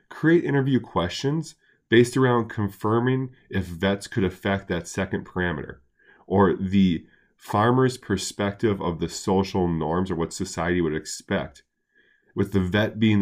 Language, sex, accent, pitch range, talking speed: English, male, American, 90-115 Hz, 135 wpm